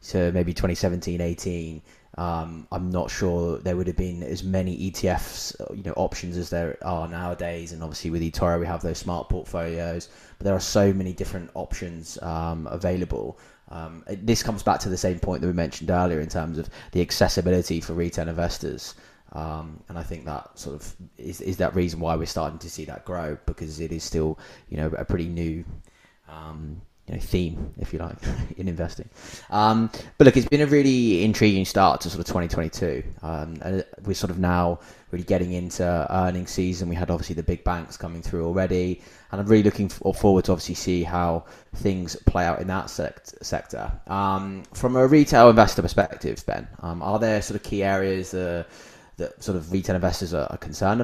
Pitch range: 85-95 Hz